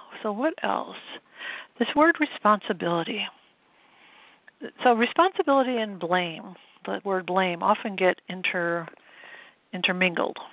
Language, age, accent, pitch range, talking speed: English, 60-79, American, 180-220 Hz, 95 wpm